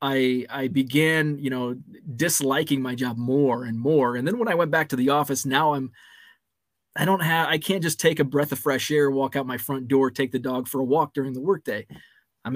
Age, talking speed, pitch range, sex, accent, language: 20-39, 235 wpm, 130-145 Hz, male, American, English